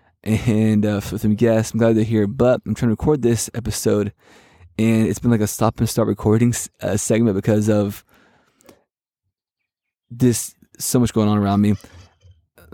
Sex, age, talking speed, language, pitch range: male, 20-39, 180 wpm, English, 100-115 Hz